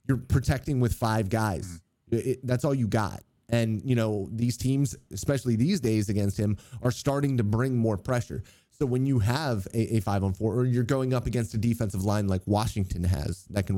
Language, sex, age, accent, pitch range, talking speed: English, male, 30-49, American, 95-120 Hz, 195 wpm